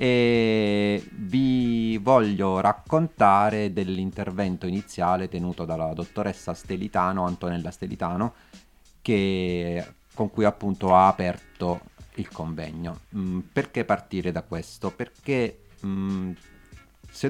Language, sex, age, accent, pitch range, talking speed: Italian, male, 30-49, native, 90-105 Hz, 95 wpm